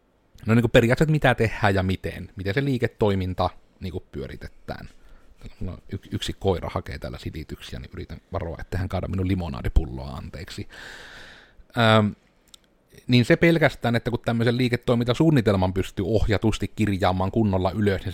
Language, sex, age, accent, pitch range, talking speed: Finnish, male, 30-49, native, 95-115 Hz, 130 wpm